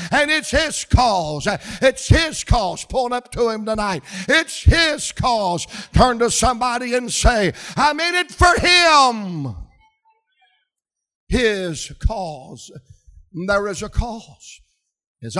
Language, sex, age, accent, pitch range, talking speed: English, male, 60-79, American, 185-235 Hz, 125 wpm